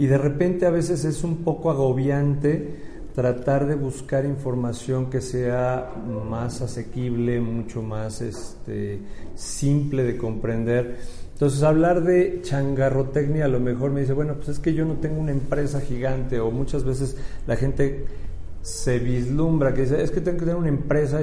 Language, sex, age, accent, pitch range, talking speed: Spanish, male, 40-59, Mexican, 120-145 Hz, 165 wpm